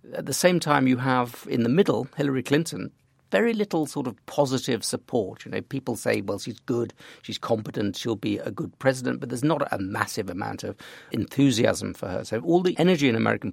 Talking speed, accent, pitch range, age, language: 210 wpm, British, 110-145 Hz, 50-69, English